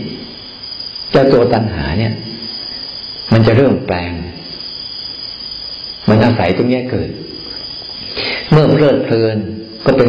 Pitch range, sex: 100-120 Hz, male